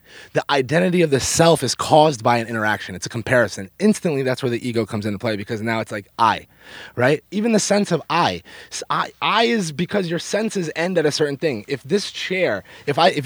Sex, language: male, English